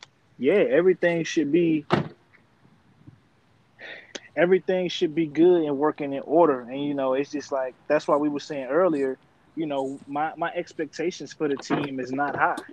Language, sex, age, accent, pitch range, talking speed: English, male, 20-39, American, 135-160 Hz, 165 wpm